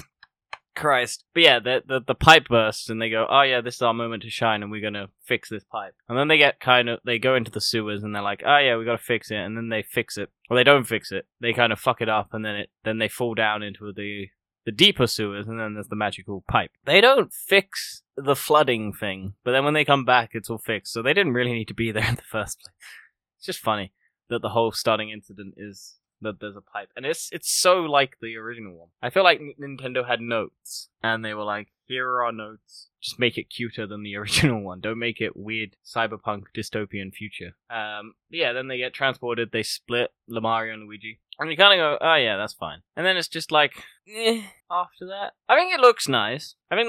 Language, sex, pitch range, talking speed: English, male, 105-130 Hz, 245 wpm